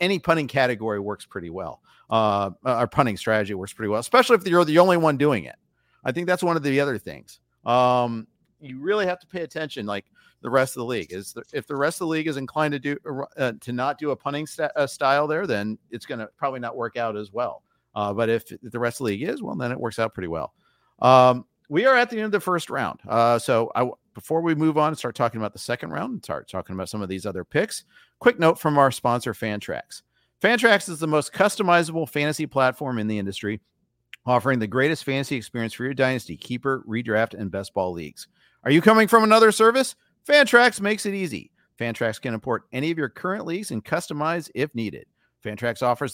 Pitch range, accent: 115-165 Hz, American